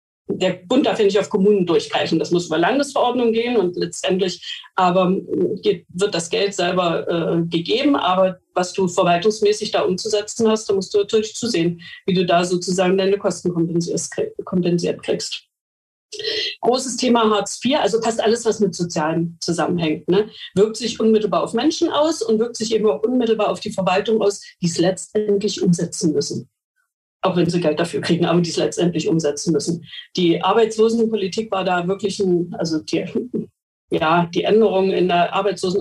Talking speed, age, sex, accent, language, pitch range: 170 wpm, 40-59, female, German, German, 175-220 Hz